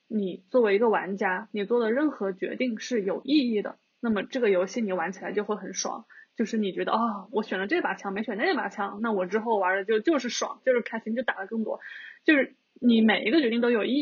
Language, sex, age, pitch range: Chinese, female, 20-39, 205-245 Hz